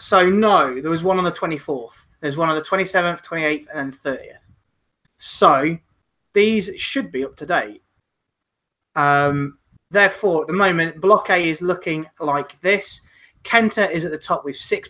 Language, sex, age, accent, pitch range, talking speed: English, male, 20-39, British, 150-190 Hz, 165 wpm